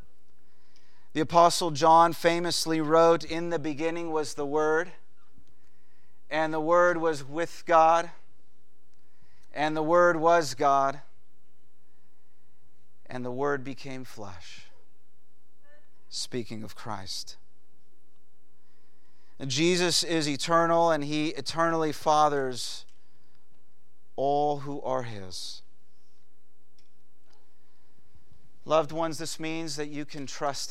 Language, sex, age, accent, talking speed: English, male, 40-59, American, 95 wpm